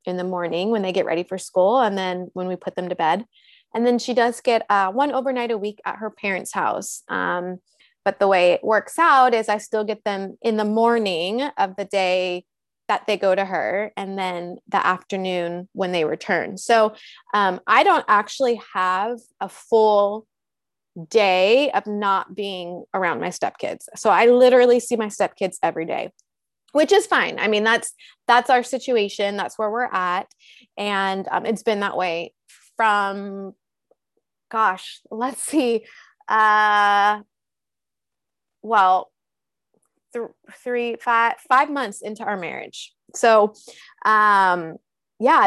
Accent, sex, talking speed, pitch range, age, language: American, female, 160 wpm, 190-235 Hz, 20-39, English